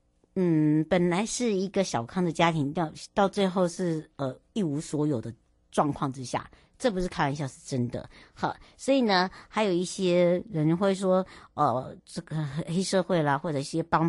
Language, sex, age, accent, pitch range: Chinese, male, 60-79, American, 145-195 Hz